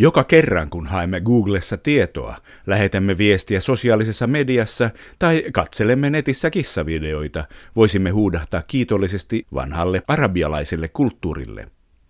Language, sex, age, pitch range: Finnish, male, 50-69, 85-115 Hz